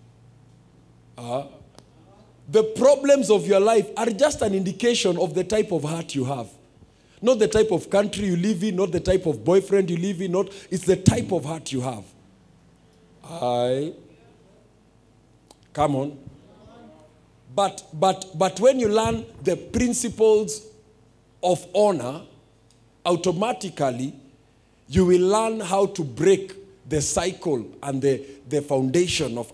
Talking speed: 140 wpm